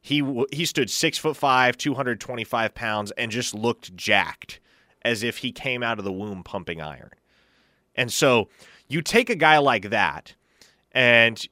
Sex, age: male, 20-39